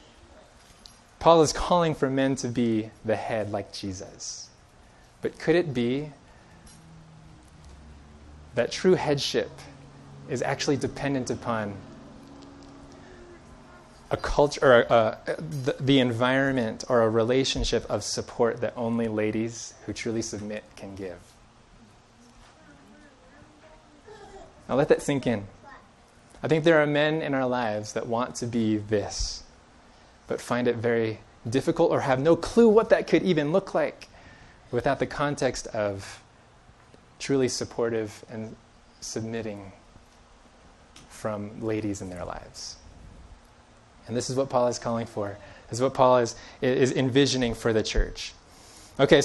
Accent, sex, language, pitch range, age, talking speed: American, male, English, 110-140 Hz, 20-39, 130 wpm